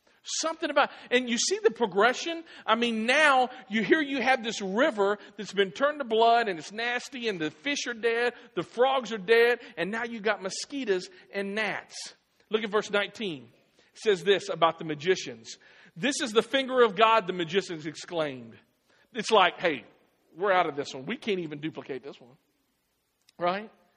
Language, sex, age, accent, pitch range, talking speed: English, male, 50-69, American, 185-250 Hz, 185 wpm